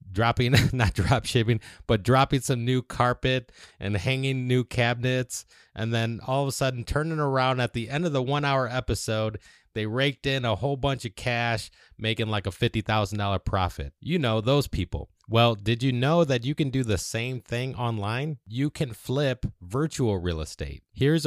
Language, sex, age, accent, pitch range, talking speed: English, male, 30-49, American, 95-125 Hz, 190 wpm